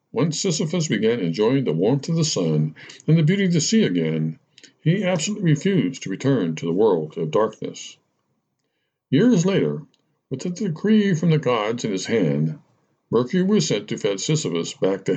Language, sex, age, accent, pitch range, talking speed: English, male, 60-79, American, 135-190 Hz, 180 wpm